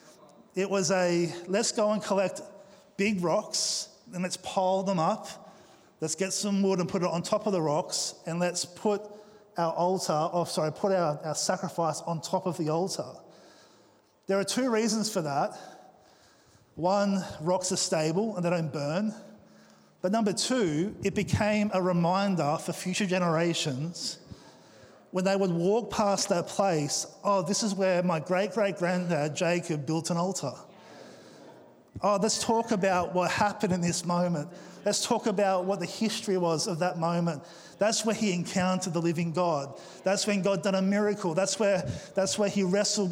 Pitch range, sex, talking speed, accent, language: 175-200 Hz, male, 165 wpm, Australian, English